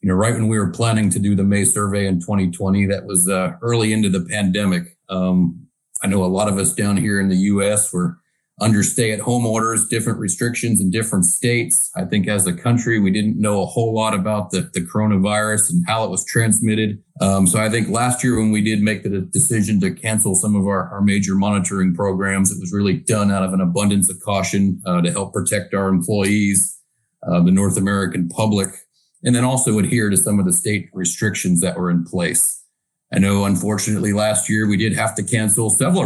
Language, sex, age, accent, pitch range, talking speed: English, male, 40-59, American, 95-110 Hz, 215 wpm